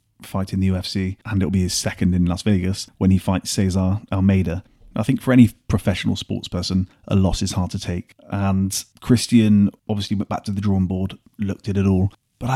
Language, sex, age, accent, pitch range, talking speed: English, male, 30-49, British, 95-110 Hz, 205 wpm